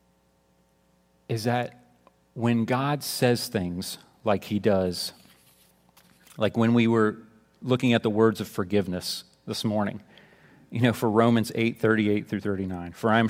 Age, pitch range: 40-59, 100-145 Hz